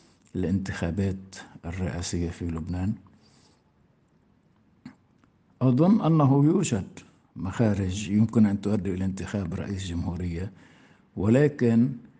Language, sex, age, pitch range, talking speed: Arabic, male, 60-79, 95-115 Hz, 80 wpm